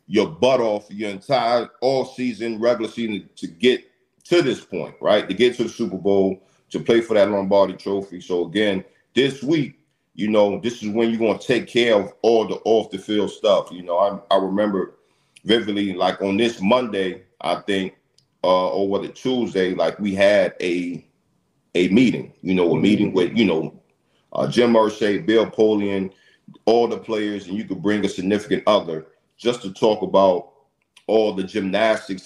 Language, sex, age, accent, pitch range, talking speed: English, male, 40-59, American, 95-110 Hz, 185 wpm